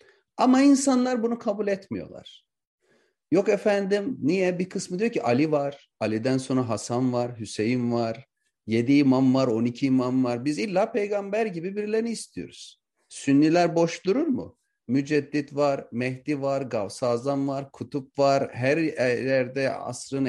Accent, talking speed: native, 140 wpm